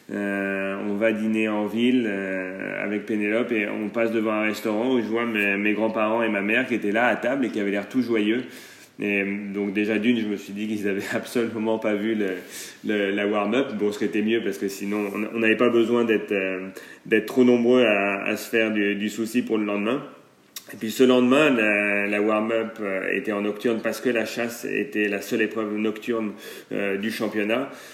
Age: 30-49